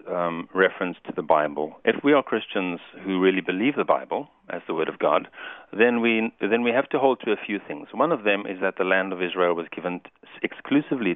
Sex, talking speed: male, 225 wpm